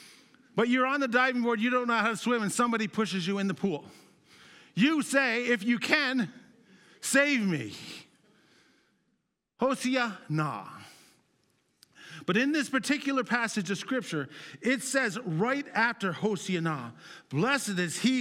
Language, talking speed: English, 140 wpm